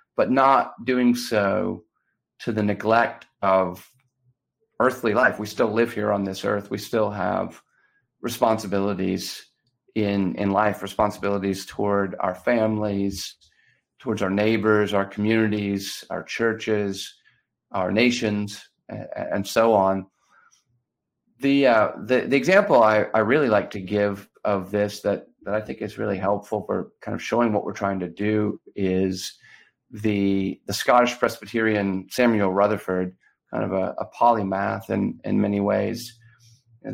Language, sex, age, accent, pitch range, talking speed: English, male, 40-59, American, 100-110 Hz, 140 wpm